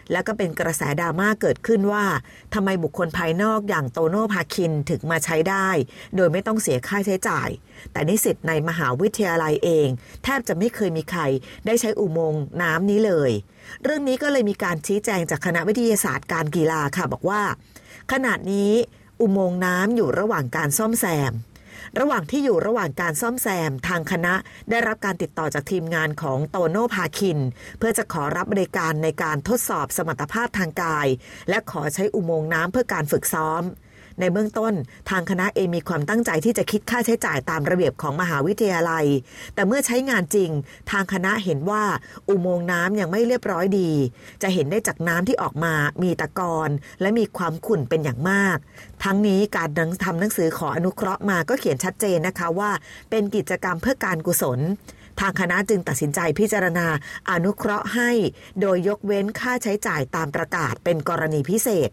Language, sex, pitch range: Thai, female, 160-210 Hz